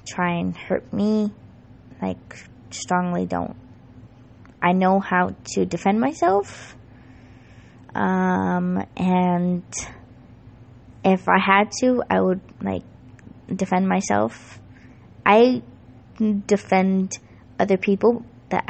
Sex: female